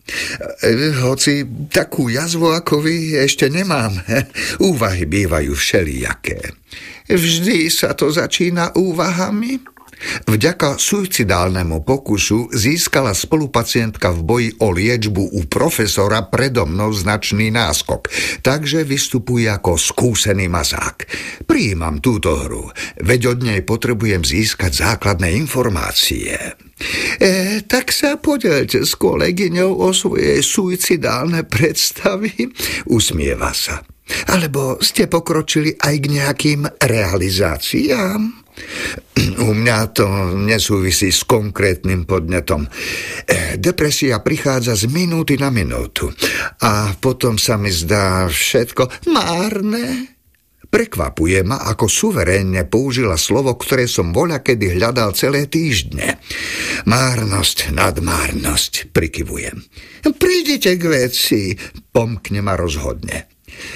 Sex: male